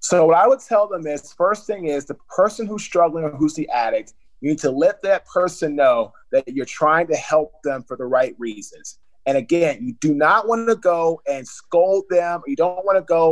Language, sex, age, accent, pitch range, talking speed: English, male, 30-49, American, 155-215 Hz, 230 wpm